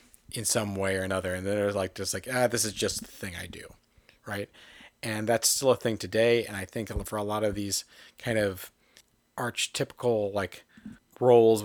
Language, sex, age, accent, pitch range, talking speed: English, male, 40-59, American, 95-115 Hz, 200 wpm